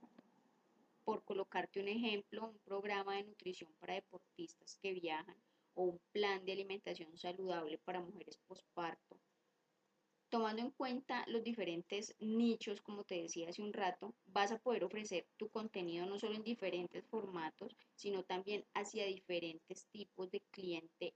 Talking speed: 145 wpm